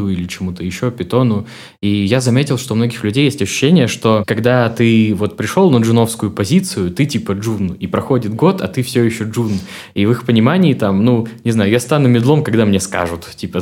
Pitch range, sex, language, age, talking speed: 95-120 Hz, male, Russian, 20-39, 205 wpm